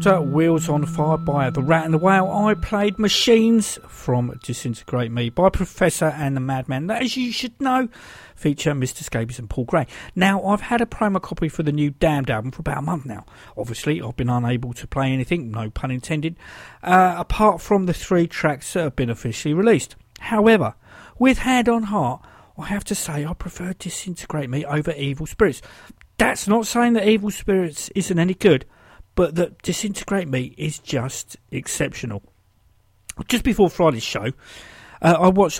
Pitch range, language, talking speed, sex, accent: 130-195 Hz, English, 175 wpm, male, British